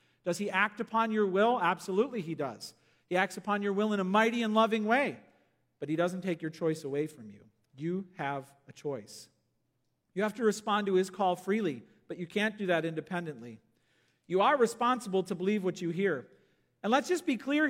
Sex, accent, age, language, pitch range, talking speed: male, American, 40-59, English, 160-205 Hz, 205 wpm